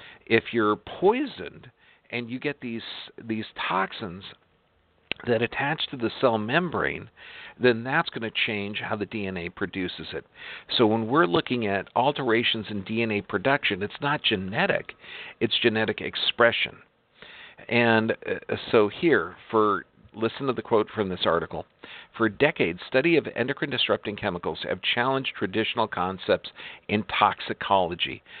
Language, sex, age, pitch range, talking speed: English, male, 50-69, 100-125 Hz, 135 wpm